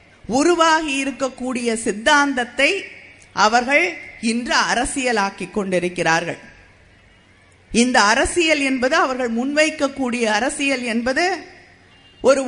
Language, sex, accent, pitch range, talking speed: Tamil, female, native, 195-275 Hz, 70 wpm